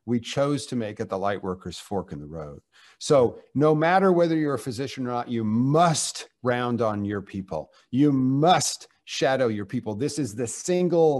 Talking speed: 195 wpm